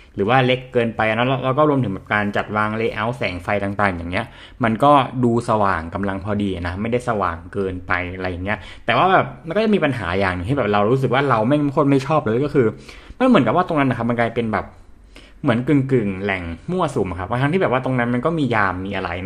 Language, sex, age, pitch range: Thai, male, 20-39, 100-135 Hz